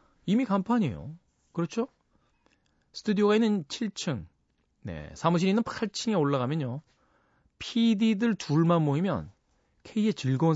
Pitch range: 125-195 Hz